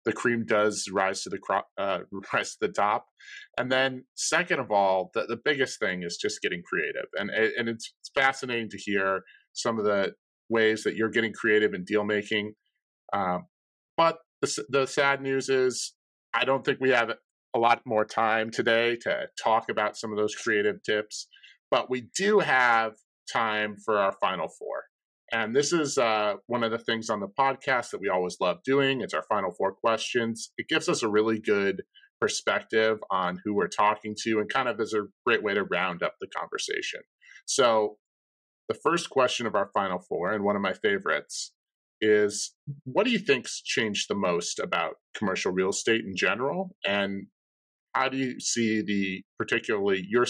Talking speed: 185 wpm